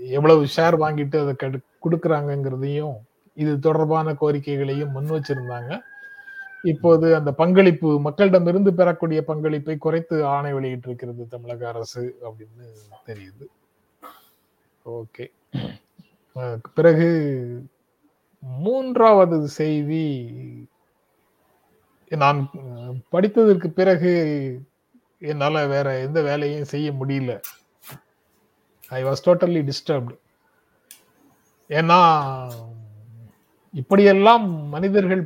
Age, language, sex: 30-49, Tamil, male